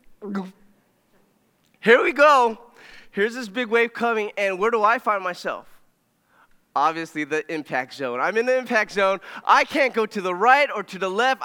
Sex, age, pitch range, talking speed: male, 20-39, 185-235 Hz, 175 wpm